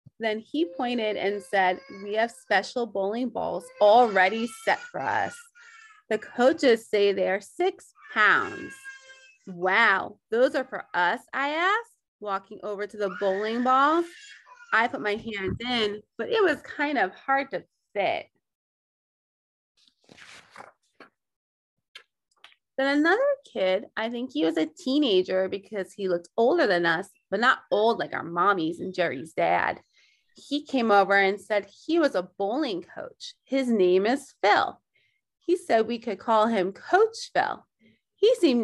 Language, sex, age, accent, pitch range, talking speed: English, female, 30-49, American, 200-320 Hz, 145 wpm